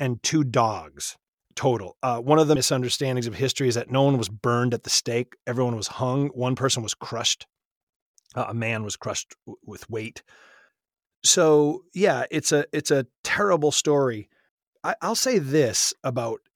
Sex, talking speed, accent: male, 165 wpm, American